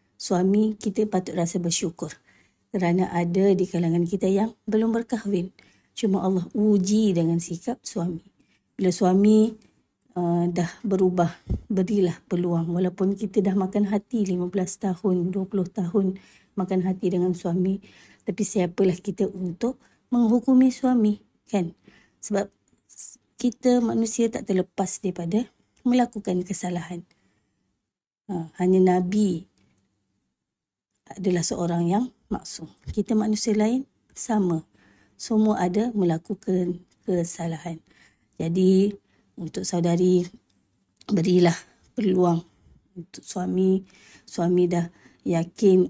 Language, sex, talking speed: Malay, female, 105 wpm